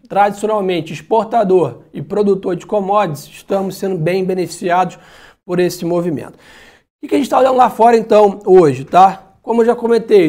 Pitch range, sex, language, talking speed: 185-220 Hz, male, Portuguese, 165 wpm